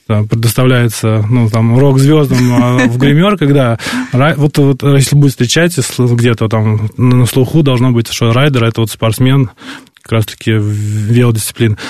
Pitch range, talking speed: 115-145 Hz, 140 wpm